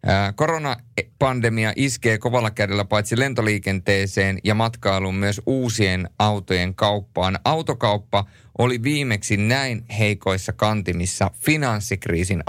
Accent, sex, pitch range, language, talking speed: native, male, 95-115 Hz, Finnish, 90 wpm